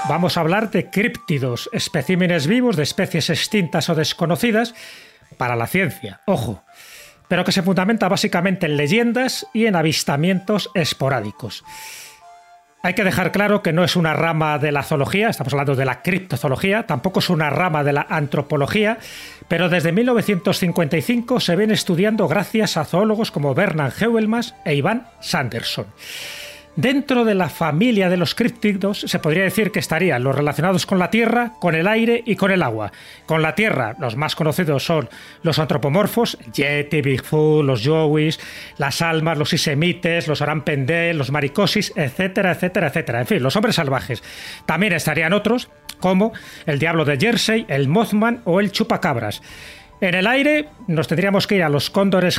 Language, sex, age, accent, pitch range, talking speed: Spanish, male, 40-59, Spanish, 150-210 Hz, 165 wpm